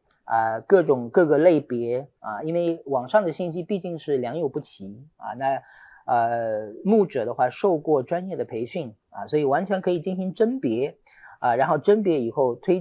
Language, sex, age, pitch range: Chinese, male, 40-59, 130-180 Hz